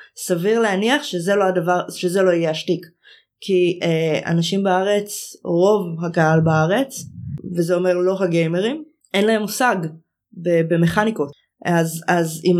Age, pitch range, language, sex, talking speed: 20-39, 160-195 Hz, Hebrew, female, 140 wpm